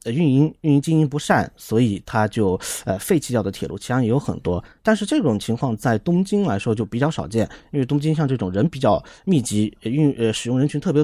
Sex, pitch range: male, 110-150 Hz